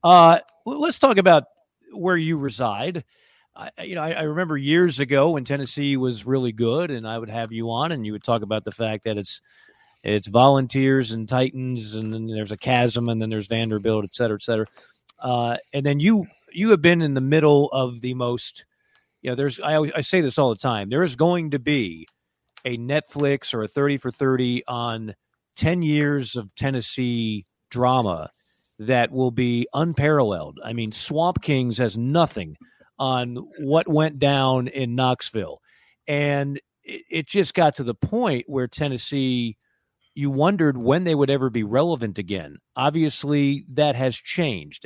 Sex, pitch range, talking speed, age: male, 115-150 Hz, 175 wpm, 40-59